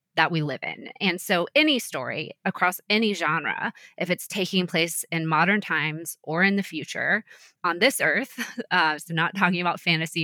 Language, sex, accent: English, female, American